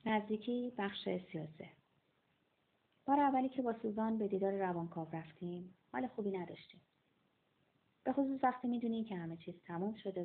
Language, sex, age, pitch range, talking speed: Persian, female, 30-49, 155-220 Hz, 140 wpm